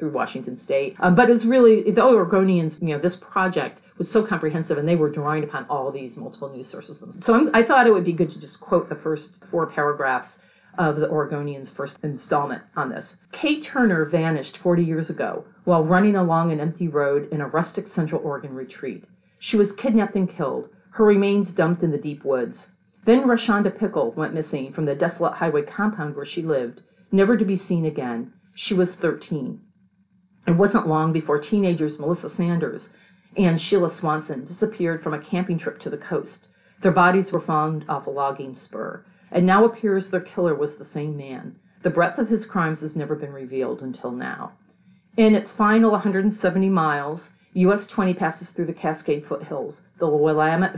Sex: female